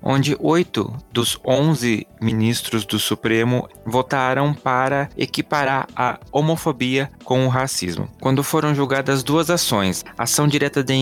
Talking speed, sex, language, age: 125 wpm, male, Portuguese, 20-39